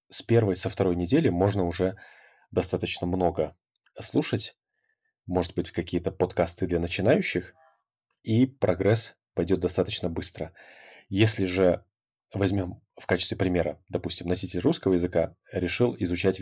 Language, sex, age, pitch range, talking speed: Russian, male, 30-49, 85-100 Hz, 120 wpm